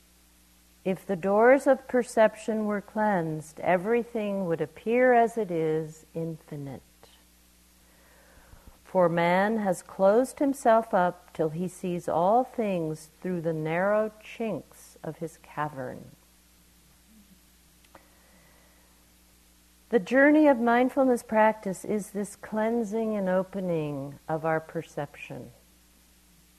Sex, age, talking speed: female, 50-69, 100 wpm